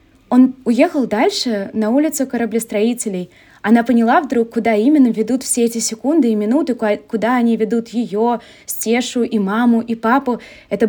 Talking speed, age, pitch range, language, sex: 150 wpm, 20-39, 210-250 Hz, Russian, female